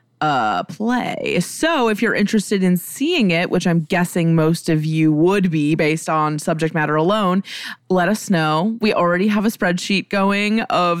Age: 20-39